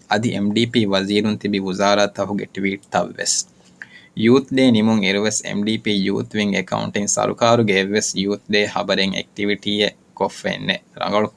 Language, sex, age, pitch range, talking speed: Urdu, male, 20-39, 100-125 Hz, 75 wpm